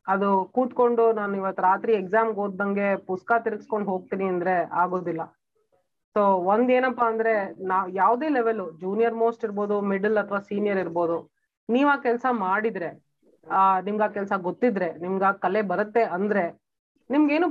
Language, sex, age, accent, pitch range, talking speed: Kannada, female, 30-49, native, 195-240 Hz, 135 wpm